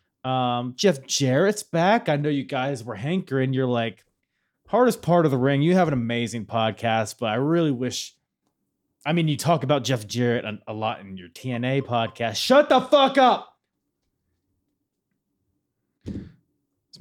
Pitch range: 100-160 Hz